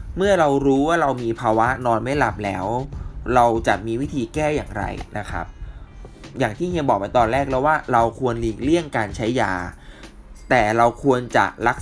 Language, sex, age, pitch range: Thai, male, 20-39, 105-145 Hz